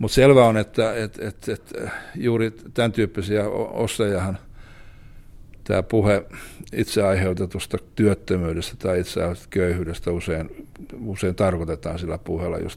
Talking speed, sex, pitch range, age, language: 115 wpm, male, 85-105 Hz, 60-79, Finnish